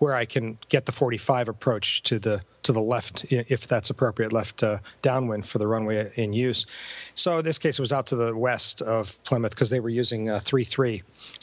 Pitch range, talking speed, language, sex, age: 115-145 Hz, 215 wpm, English, male, 40-59